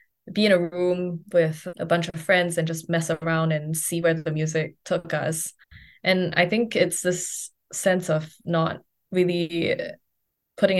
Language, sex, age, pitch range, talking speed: English, female, 20-39, 160-190 Hz, 165 wpm